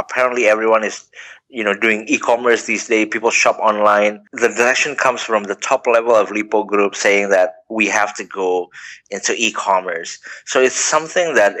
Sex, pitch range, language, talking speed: male, 105-120 Hz, English, 175 wpm